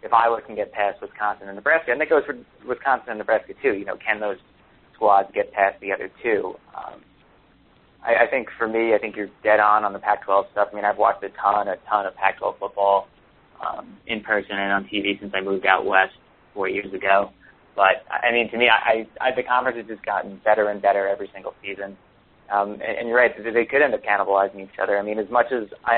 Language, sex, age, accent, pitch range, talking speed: English, male, 30-49, American, 100-115 Hz, 235 wpm